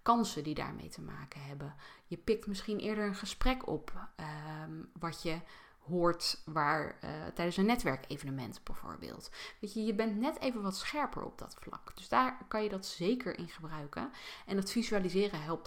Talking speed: 175 wpm